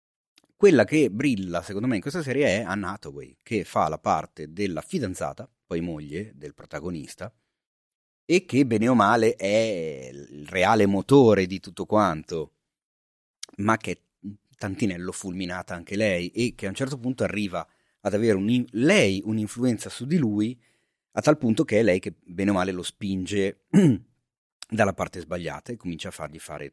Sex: male